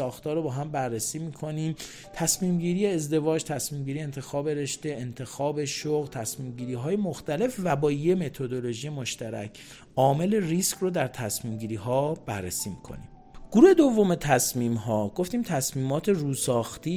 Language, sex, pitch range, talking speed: Persian, male, 120-160 Hz, 145 wpm